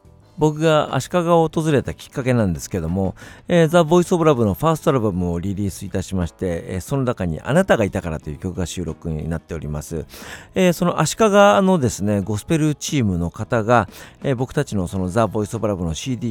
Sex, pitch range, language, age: male, 95-155 Hz, Japanese, 50-69